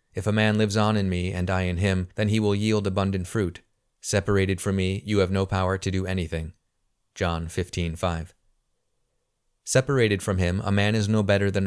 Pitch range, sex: 90-105 Hz, male